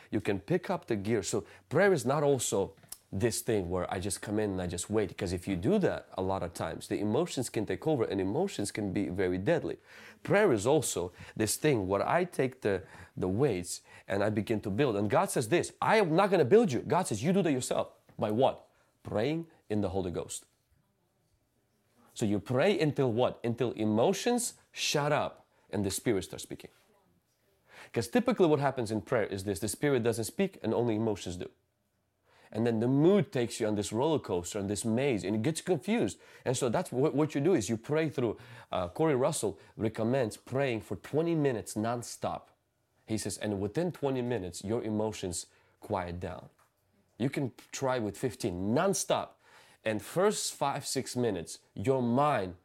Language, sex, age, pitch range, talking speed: English, male, 30-49, 105-140 Hz, 195 wpm